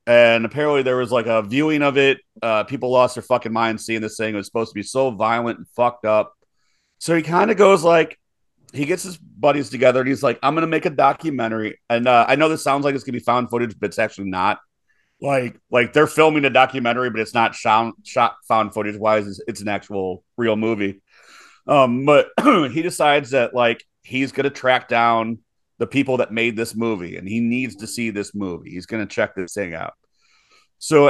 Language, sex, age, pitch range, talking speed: English, male, 30-49, 115-150 Hz, 225 wpm